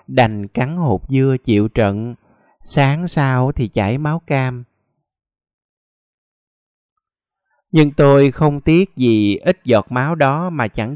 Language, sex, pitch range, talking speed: Vietnamese, male, 115-150 Hz, 125 wpm